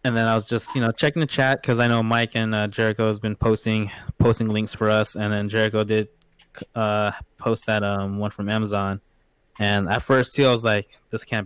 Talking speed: 225 wpm